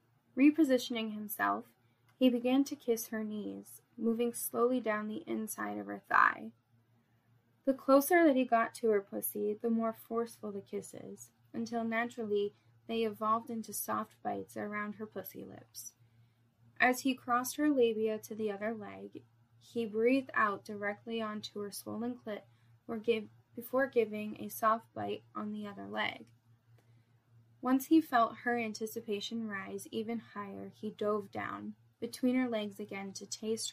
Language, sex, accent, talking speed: English, female, American, 150 wpm